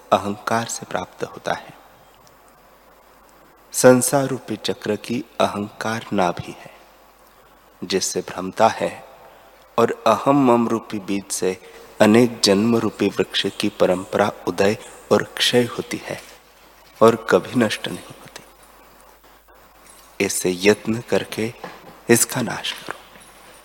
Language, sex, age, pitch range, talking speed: Hindi, male, 30-49, 100-125 Hz, 110 wpm